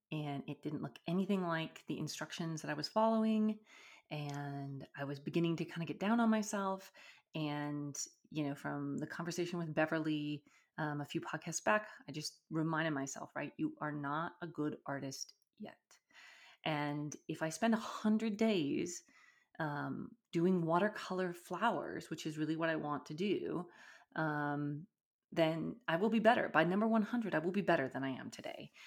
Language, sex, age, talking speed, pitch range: English, female, 30-49, 175 wpm, 150-210 Hz